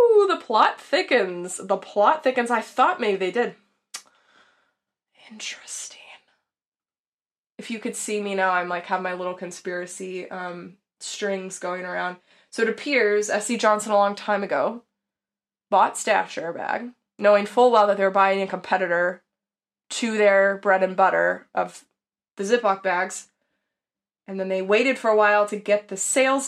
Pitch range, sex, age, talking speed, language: 190-225 Hz, female, 20-39, 160 wpm, English